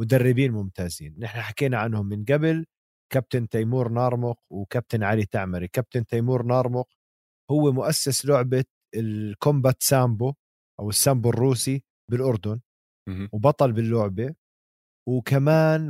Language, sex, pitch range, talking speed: Arabic, male, 110-135 Hz, 105 wpm